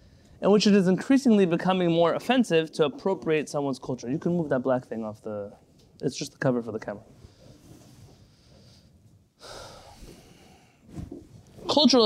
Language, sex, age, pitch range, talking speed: English, male, 30-49, 135-185 Hz, 140 wpm